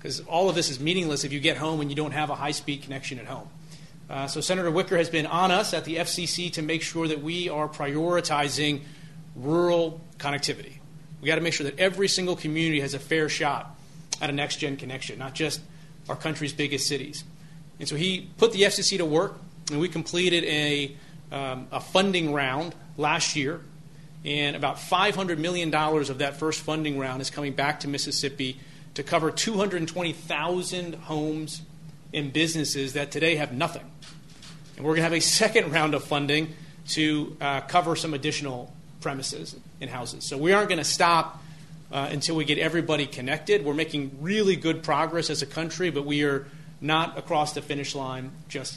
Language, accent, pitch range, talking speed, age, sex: English, American, 145-165 Hz, 185 wpm, 30-49, male